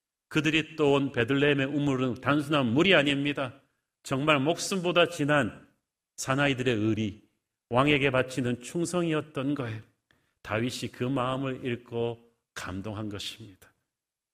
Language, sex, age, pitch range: Korean, male, 40-59, 125-165 Hz